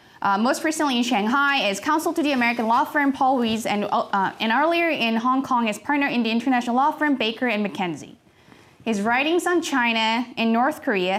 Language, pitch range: English, 220-290 Hz